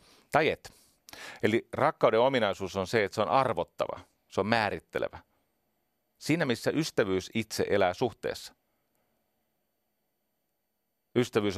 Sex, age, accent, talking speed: male, 40-59, native, 105 wpm